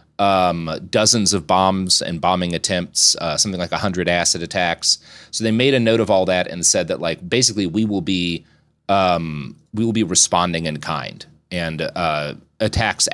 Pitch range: 85-105 Hz